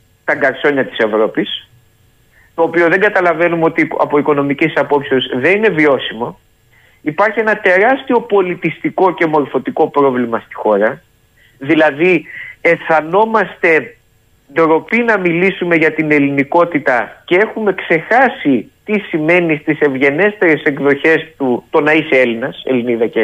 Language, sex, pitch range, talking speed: Greek, male, 130-175 Hz, 120 wpm